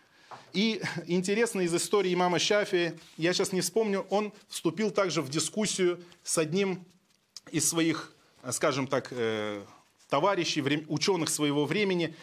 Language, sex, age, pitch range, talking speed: Russian, male, 30-49, 175-225 Hz, 125 wpm